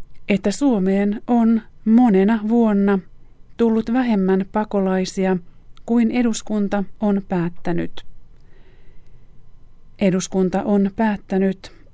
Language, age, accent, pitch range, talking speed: Finnish, 30-49, native, 180-215 Hz, 75 wpm